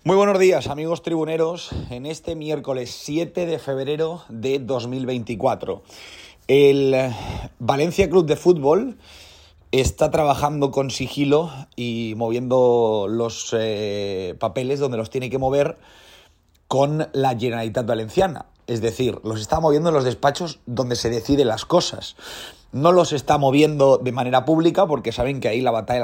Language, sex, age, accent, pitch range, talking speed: Spanish, male, 30-49, Spanish, 120-140 Hz, 145 wpm